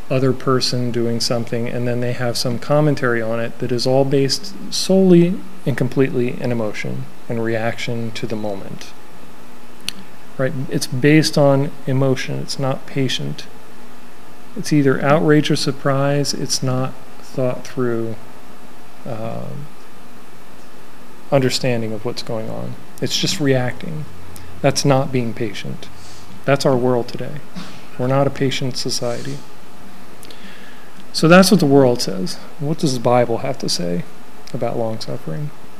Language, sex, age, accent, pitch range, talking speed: English, male, 40-59, American, 115-140 Hz, 135 wpm